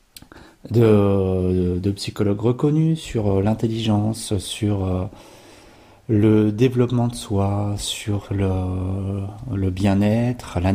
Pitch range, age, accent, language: 105-125 Hz, 30-49, French, French